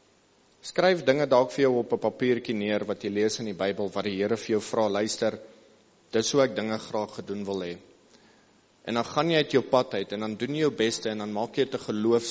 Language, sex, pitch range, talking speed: English, male, 110-130 Hz, 245 wpm